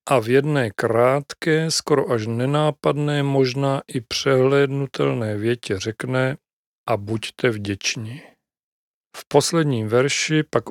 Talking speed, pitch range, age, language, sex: 105 wpm, 110-130 Hz, 40-59, Czech, male